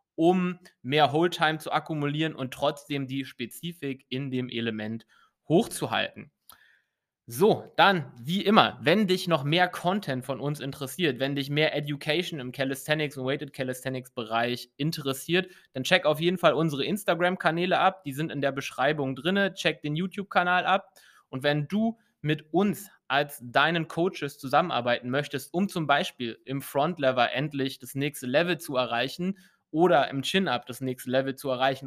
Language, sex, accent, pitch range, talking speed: English, male, German, 135-170 Hz, 155 wpm